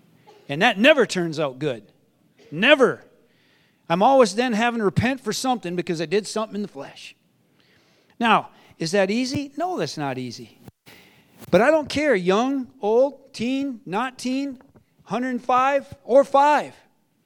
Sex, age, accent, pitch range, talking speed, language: male, 40-59, American, 180-255 Hz, 145 wpm, English